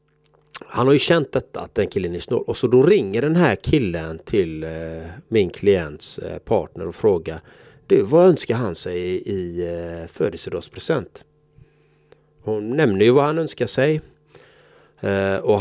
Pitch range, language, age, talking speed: 90-140 Hz, Swedish, 30-49, 145 wpm